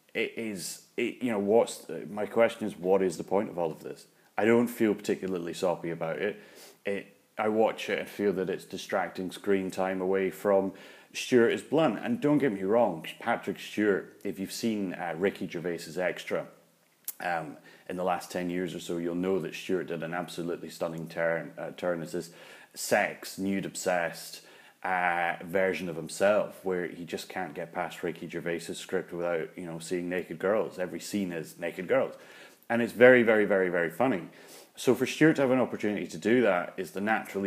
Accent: British